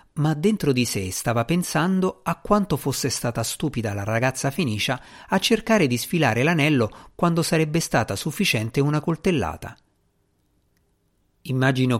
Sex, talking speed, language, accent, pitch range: male, 130 wpm, Italian, native, 105-150 Hz